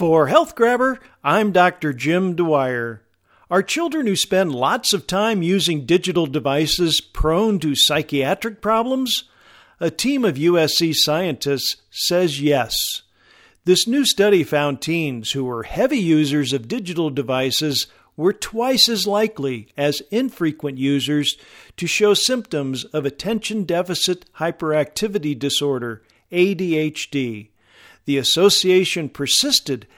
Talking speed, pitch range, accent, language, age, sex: 120 wpm, 140-195 Hz, American, English, 50-69, male